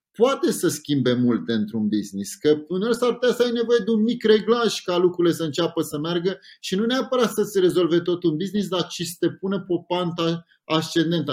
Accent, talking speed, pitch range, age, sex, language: native, 210 wpm, 145-170 Hz, 30-49, male, Romanian